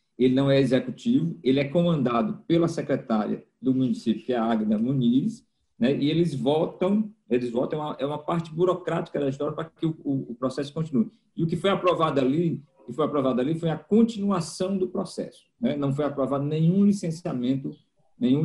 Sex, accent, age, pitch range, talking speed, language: male, Brazilian, 50-69, 130-180 Hz, 175 wpm, Portuguese